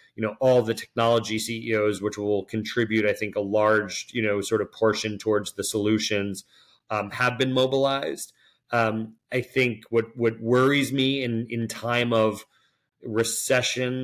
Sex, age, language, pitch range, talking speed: male, 30-49, English, 110-125 Hz, 160 wpm